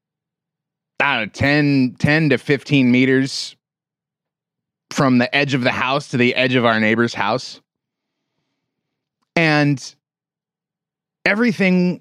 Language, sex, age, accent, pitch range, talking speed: English, male, 30-49, American, 130-160 Hz, 110 wpm